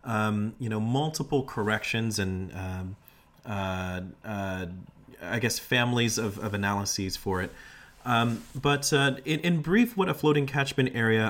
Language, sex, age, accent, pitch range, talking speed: English, male, 30-49, American, 105-135 Hz, 150 wpm